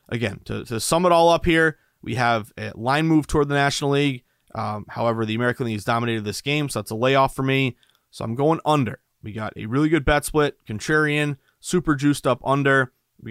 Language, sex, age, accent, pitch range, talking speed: English, male, 30-49, American, 110-140 Hz, 220 wpm